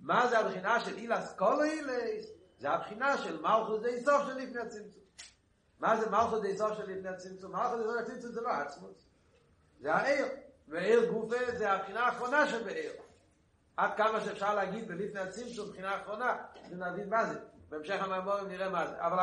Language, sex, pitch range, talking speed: Hebrew, male, 185-235 Hz, 160 wpm